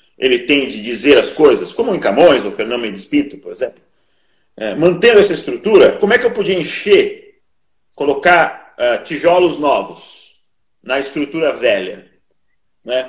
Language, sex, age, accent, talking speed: Portuguese, male, 40-59, Brazilian, 150 wpm